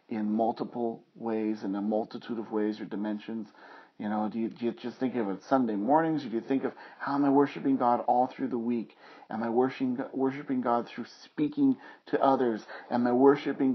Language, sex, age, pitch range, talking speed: English, male, 40-59, 115-145 Hz, 200 wpm